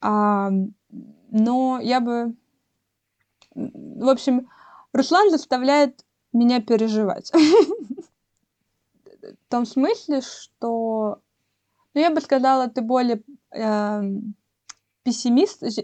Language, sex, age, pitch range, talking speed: Russian, female, 20-39, 215-275 Hz, 75 wpm